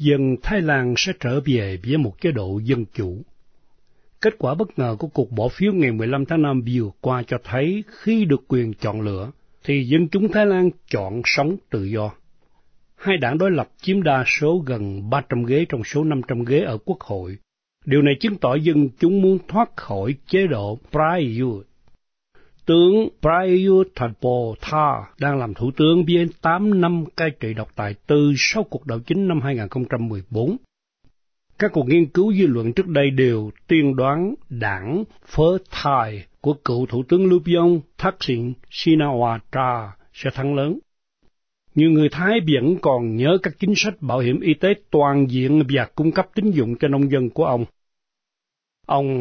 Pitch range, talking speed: 125-175 Hz, 175 wpm